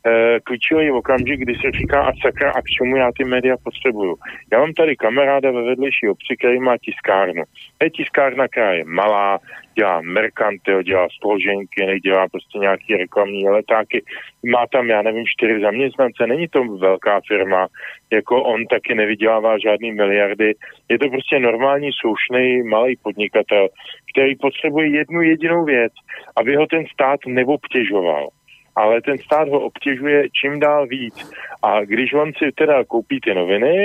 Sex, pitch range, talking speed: male, 105-145 Hz, 155 wpm